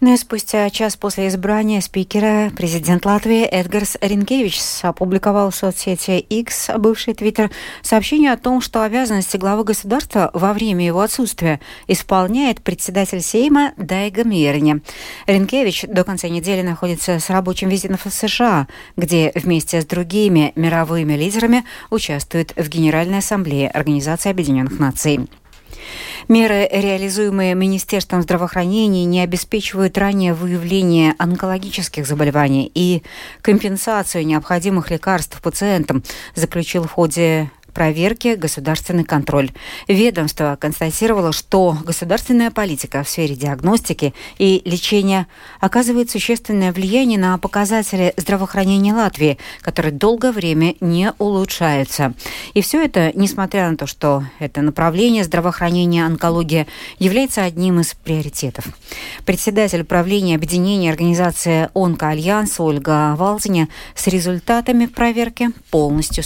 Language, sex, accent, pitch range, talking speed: Russian, female, native, 165-205 Hz, 110 wpm